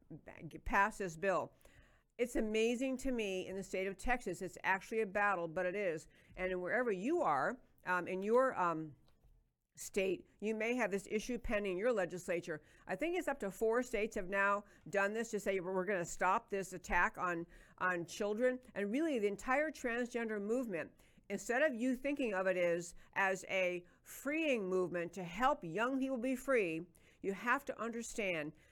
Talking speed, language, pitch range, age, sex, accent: 180 wpm, English, 185-245 Hz, 50-69, female, American